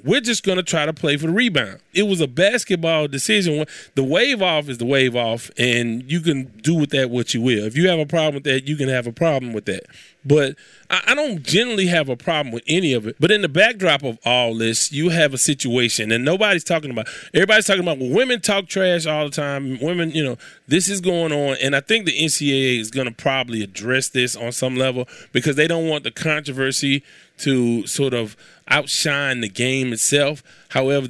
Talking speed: 225 wpm